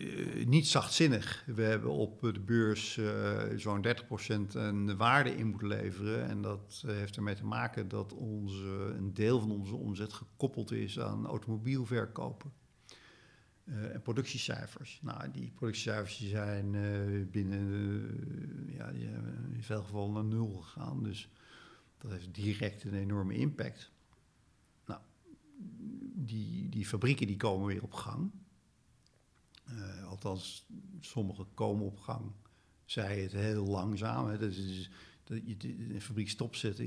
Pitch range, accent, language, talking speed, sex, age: 100-115 Hz, Dutch, Dutch, 140 wpm, male, 50-69